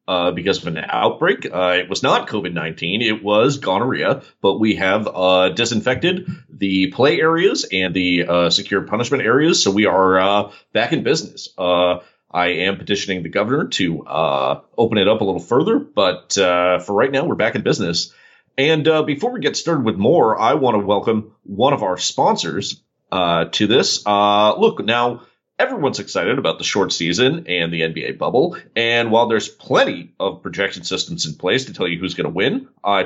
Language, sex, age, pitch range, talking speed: English, male, 30-49, 95-130 Hz, 190 wpm